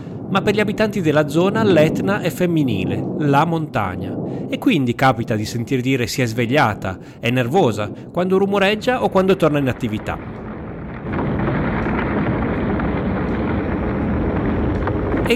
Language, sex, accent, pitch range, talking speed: Italian, male, native, 105-155 Hz, 115 wpm